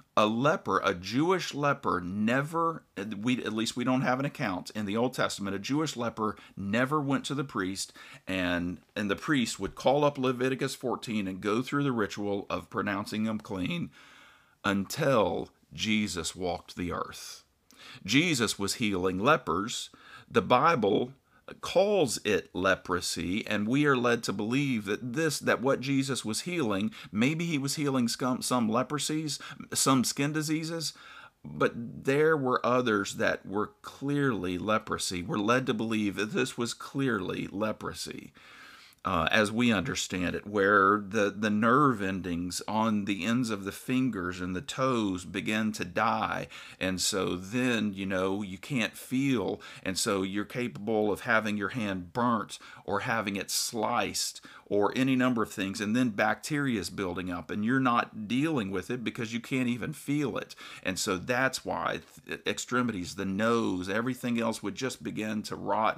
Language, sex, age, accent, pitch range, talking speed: English, male, 50-69, American, 100-130 Hz, 160 wpm